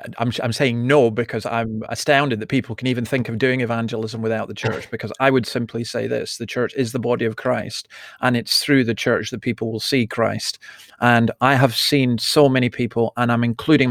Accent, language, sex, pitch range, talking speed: British, English, male, 115-135 Hz, 220 wpm